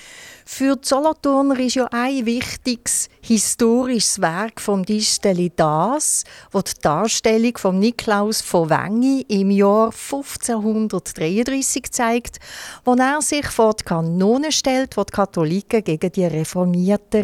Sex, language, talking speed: female, German, 125 wpm